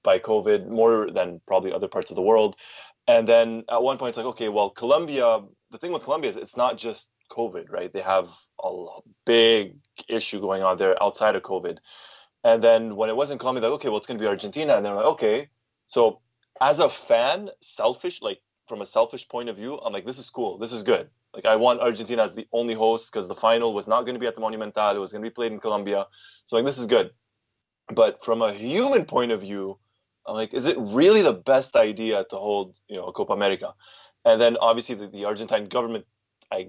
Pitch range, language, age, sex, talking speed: 100-115 Hz, English, 20-39, male, 230 wpm